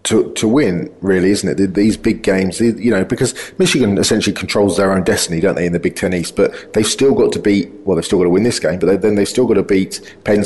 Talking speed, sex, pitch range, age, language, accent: 275 wpm, male, 90-105 Hz, 30-49, English, British